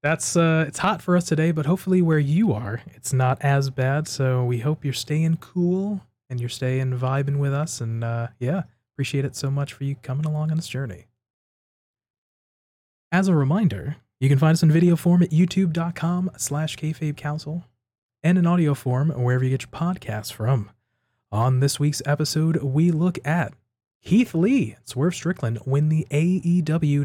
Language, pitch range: English, 120-160 Hz